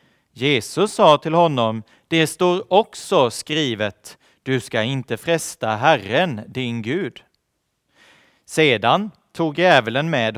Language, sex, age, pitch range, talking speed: Swedish, male, 40-59, 110-150 Hz, 110 wpm